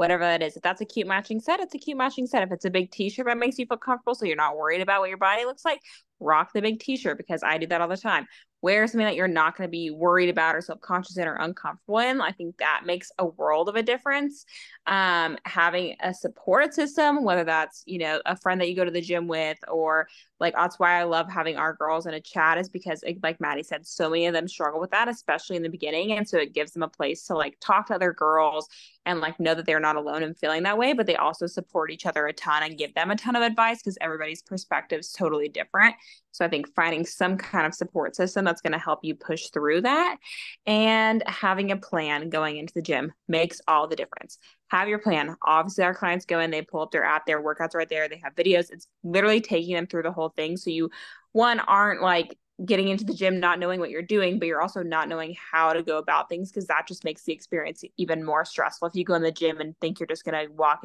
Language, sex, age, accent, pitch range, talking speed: English, female, 10-29, American, 160-195 Hz, 260 wpm